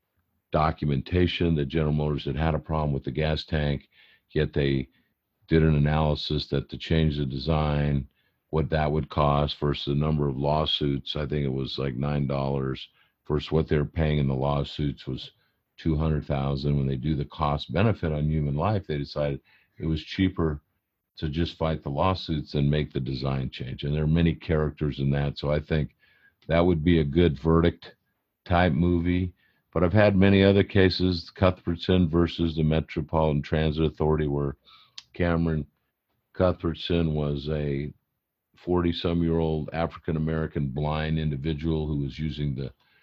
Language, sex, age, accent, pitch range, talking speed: English, male, 50-69, American, 75-85 Hz, 165 wpm